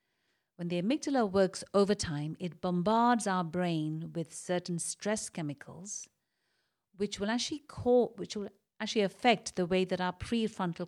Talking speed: 150 wpm